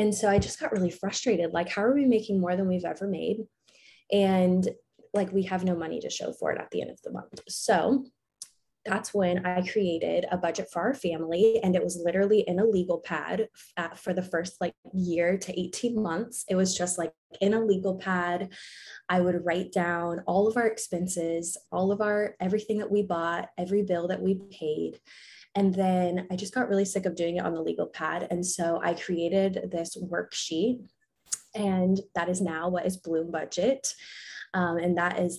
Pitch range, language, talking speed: 175-200 Hz, English, 200 wpm